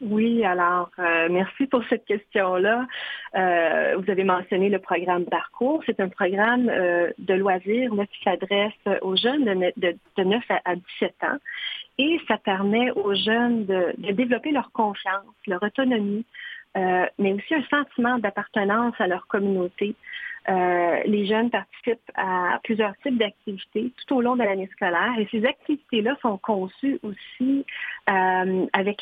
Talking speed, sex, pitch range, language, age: 150 wpm, female, 185-240 Hz, French, 30-49